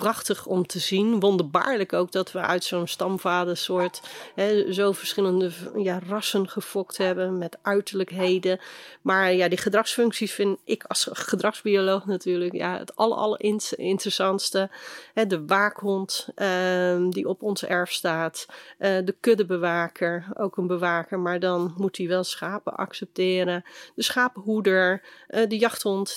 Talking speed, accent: 125 wpm, Dutch